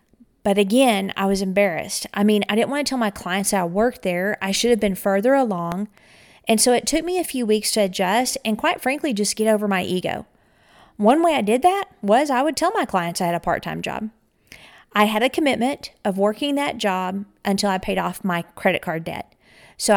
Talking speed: 225 wpm